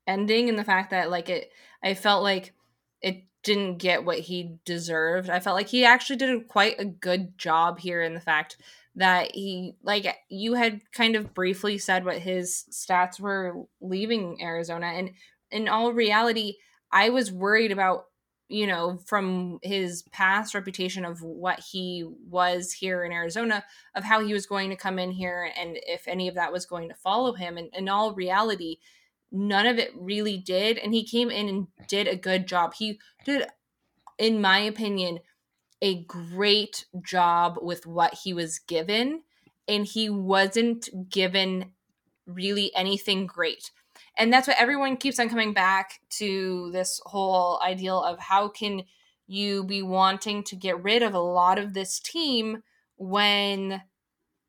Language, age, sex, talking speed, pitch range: English, 20-39, female, 165 wpm, 180-210 Hz